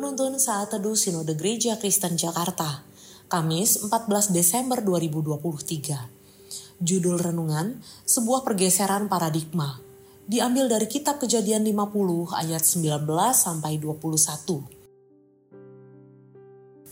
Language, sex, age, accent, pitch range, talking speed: Indonesian, female, 20-39, native, 160-220 Hz, 80 wpm